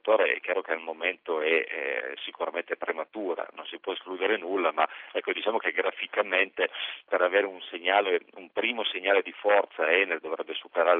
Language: Italian